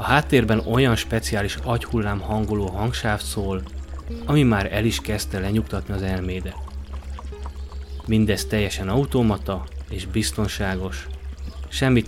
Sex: male